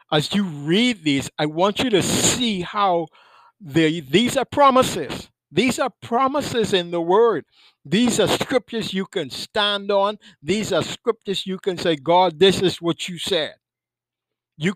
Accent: American